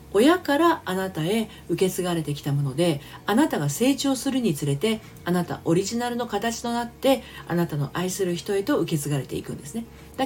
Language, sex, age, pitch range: Japanese, female, 40-59, 160-230 Hz